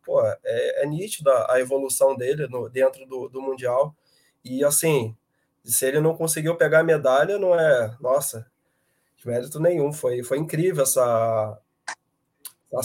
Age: 20-39